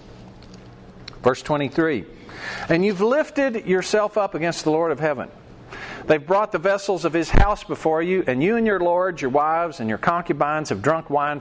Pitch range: 105-170 Hz